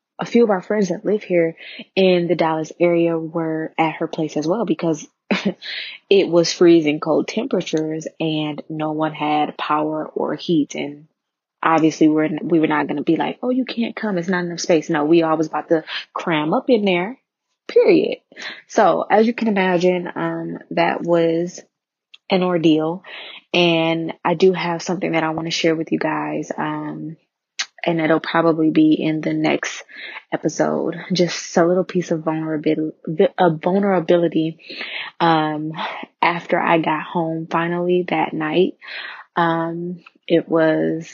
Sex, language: female, English